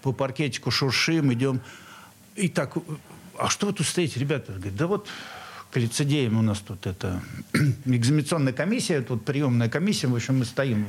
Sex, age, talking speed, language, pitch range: male, 50-69, 170 wpm, Russian, 115-165 Hz